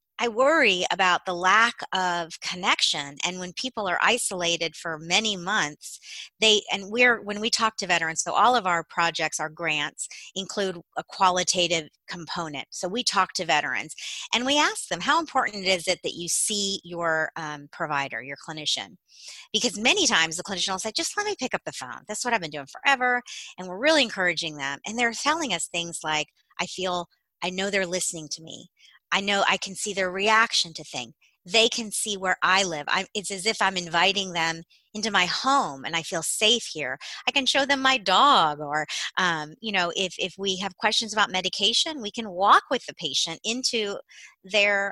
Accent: American